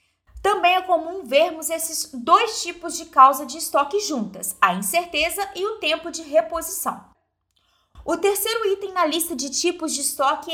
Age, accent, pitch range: 20-39, Brazilian, 290-345 Hz